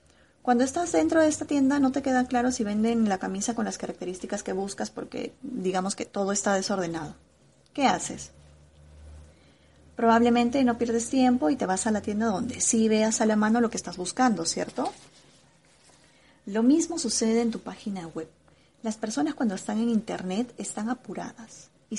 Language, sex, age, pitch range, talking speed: Spanish, female, 30-49, 190-245 Hz, 175 wpm